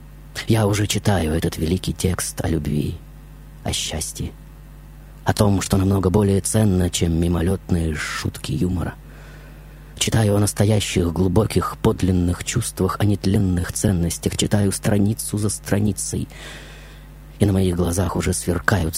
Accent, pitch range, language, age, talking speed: native, 85-105 Hz, Russian, 30-49, 125 wpm